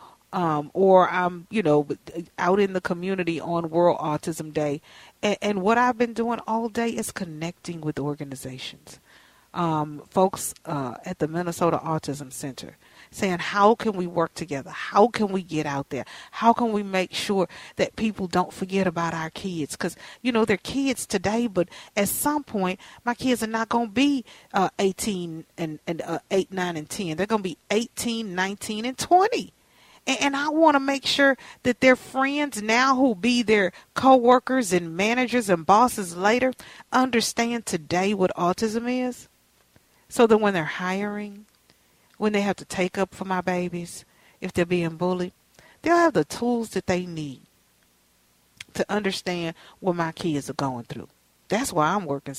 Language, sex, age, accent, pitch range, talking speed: English, female, 40-59, American, 165-225 Hz, 175 wpm